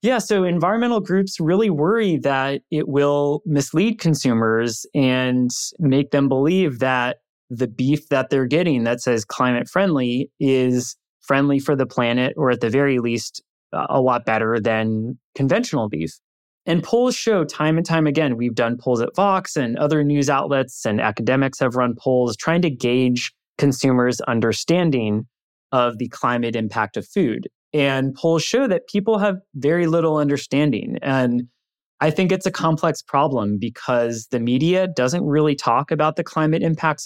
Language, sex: English, male